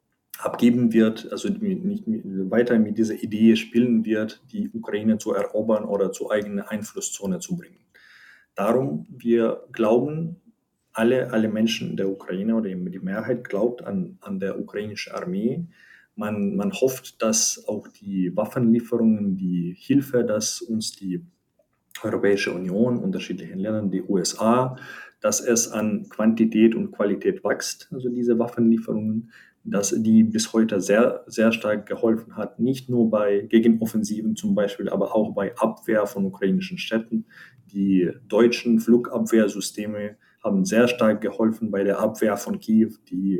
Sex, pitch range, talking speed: male, 105-125 Hz, 140 wpm